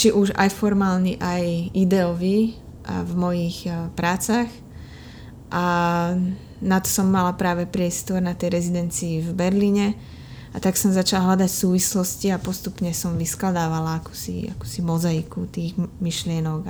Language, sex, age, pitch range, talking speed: Slovak, female, 20-39, 170-190 Hz, 125 wpm